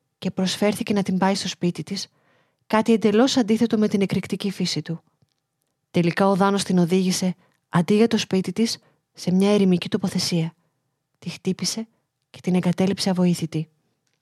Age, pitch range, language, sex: 30-49, 170-200 Hz, Greek, female